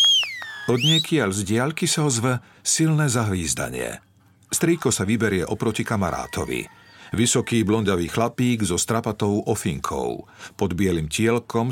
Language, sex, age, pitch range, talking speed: Slovak, male, 50-69, 100-145 Hz, 115 wpm